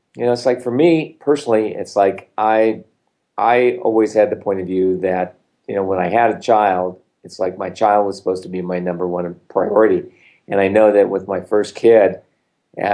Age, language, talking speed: 40-59, English, 210 wpm